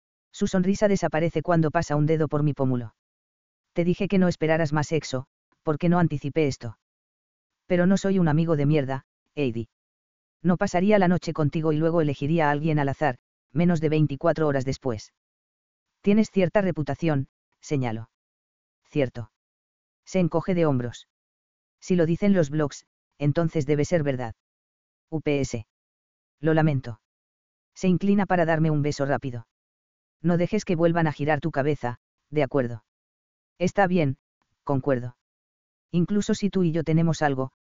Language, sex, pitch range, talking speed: English, female, 110-165 Hz, 150 wpm